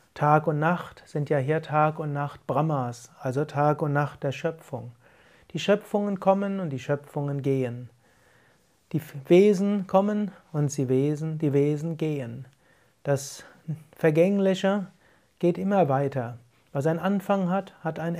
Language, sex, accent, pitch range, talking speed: German, male, German, 135-170 Hz, 140 wpm